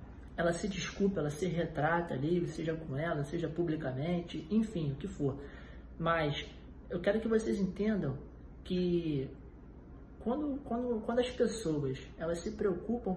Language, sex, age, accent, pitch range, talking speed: Portuguese, male, 20-39, Brazilian, 145-195 Hz, 130 wpm